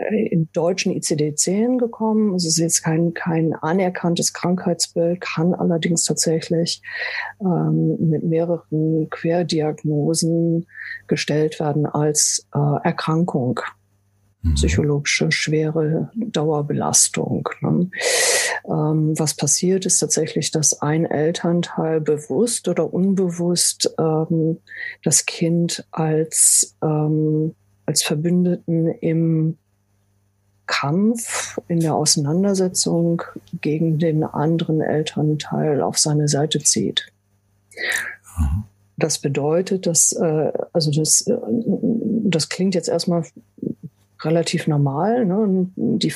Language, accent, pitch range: German, German, 155-180 Hz